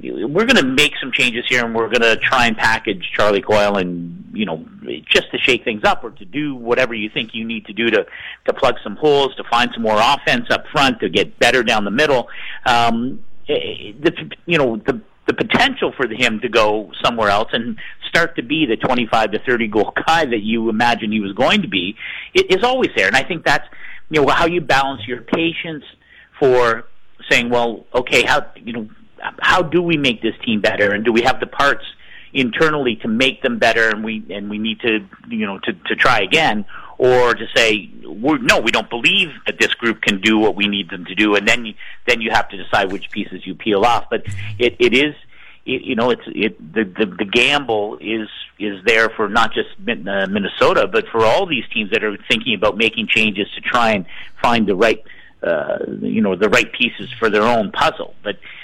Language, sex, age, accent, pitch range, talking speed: English, male, 50-69, American, 105-145 Hz, 220 wpm